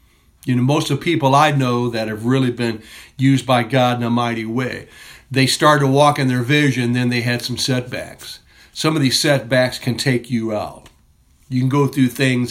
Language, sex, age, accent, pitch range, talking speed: English, male, 60-79, American, 115-135 Hz, 210 wpm